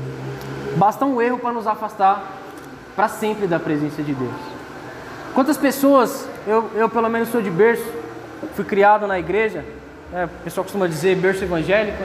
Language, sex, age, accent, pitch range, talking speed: Portuguese, male, 20-39, Brazilian, 175-240 Hz, 160 wpm